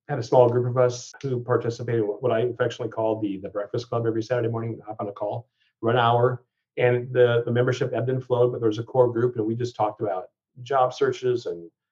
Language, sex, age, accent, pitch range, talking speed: English, male, 40-59, American, 110-125 Hz, 235 wpm